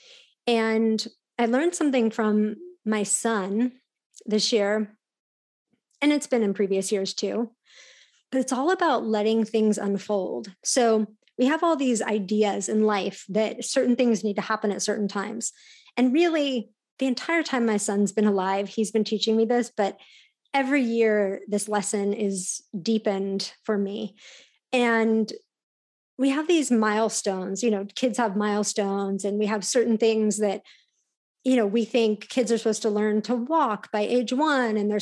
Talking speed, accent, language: 165 wpm, American, English